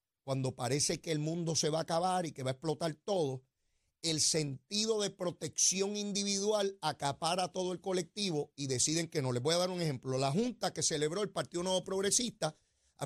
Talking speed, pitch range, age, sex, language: 200 wpm, 155-195 Hz, 30-49, male, Spanish